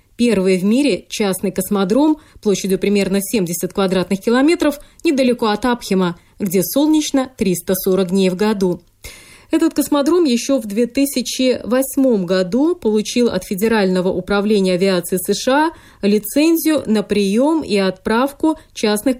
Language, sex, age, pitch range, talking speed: Russian, female, 20-39, 190-270 Hz, 115 wpm